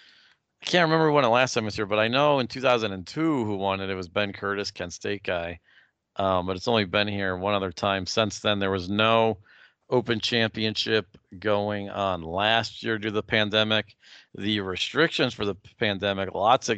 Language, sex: English, male